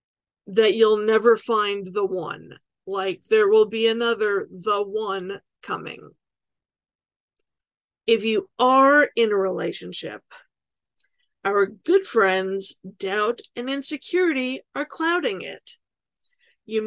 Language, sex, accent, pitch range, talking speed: English, female, American, 205-295 Hz, 105 wpm